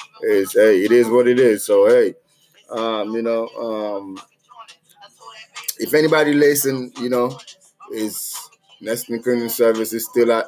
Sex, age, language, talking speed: male, 30-49, English, 145 wpm